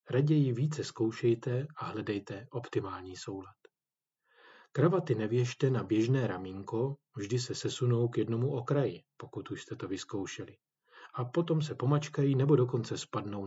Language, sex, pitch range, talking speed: Czech, male, 110-145 Hz, 135 wpm